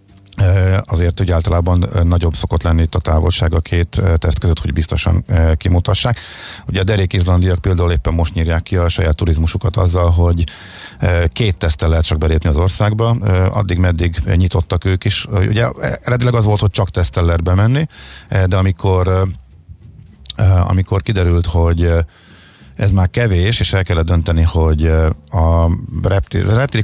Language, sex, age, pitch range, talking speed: Hungarian, male, 50-69, 85-100 Hz, 150 wpm